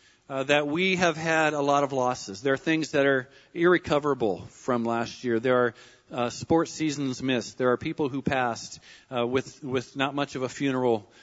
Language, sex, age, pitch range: English, male, 40-59, 130-175 Hz